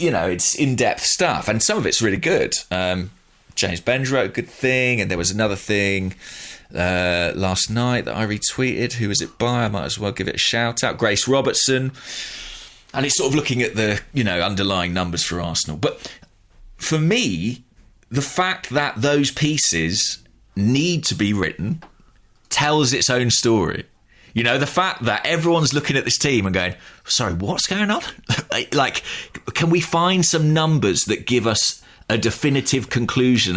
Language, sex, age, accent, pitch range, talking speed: English, male, 20-39, British, 105-145 Hz, 180 wpm